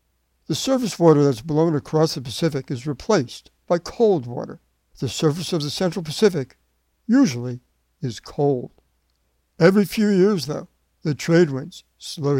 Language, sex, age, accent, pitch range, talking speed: English, male, 60-79, American, 120-165 Hz, 145 wpm